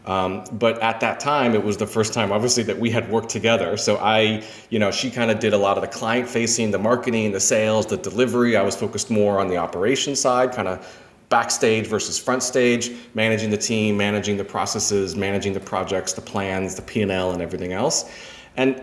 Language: English